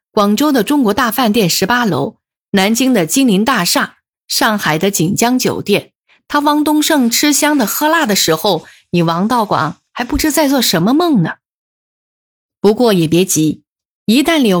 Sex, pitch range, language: female, 175-255 Hz, Chinese